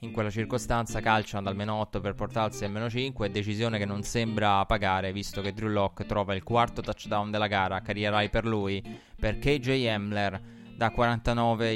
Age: 20-39